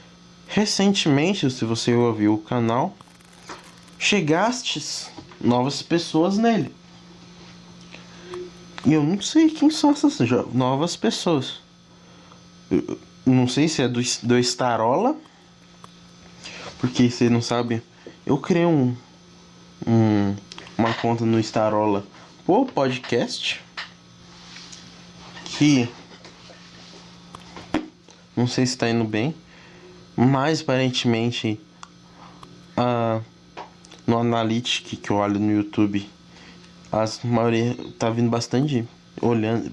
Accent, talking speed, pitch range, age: Brazilian, 90 wpm, 115-170 Hz, 20-39